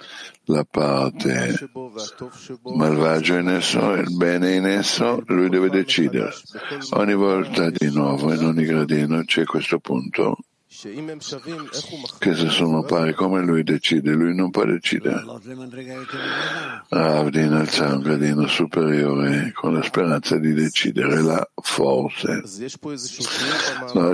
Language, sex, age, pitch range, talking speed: Italian, male, 60-79, 80-105 Hz, 115 wpm